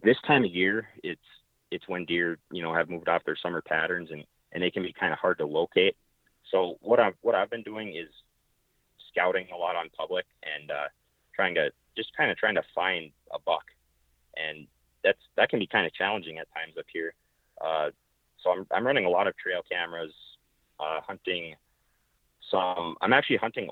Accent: American